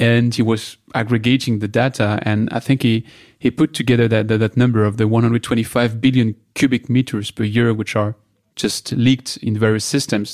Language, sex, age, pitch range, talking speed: English, male, 30-49, 110-130 Hz, 185 wpm